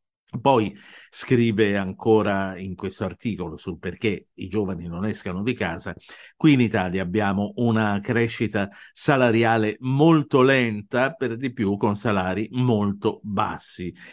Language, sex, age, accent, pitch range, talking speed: Italian, male, 50-69, native, 95-130 Hz, 125 wpm